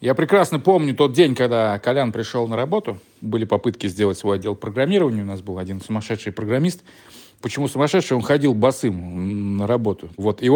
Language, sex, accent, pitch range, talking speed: Russian, male, native, 100-140 Hz, 175 wpm